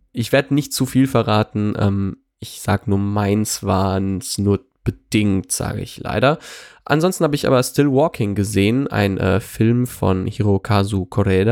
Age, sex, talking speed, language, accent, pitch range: 20-39, male, 160 wpm, German, German, 100-125 Hz